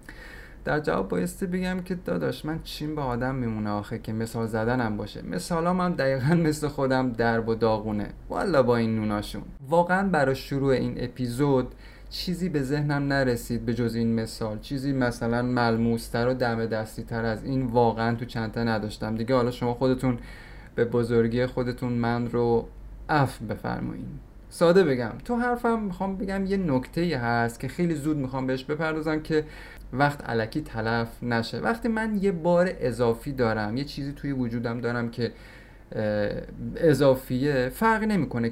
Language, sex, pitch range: Persian, male, 115-155 Hz